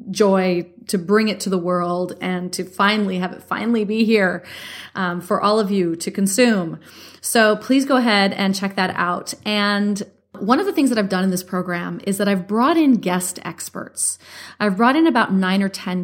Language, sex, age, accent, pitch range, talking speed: English, female, 30-49, American, 185-230 Hz, 205 wpm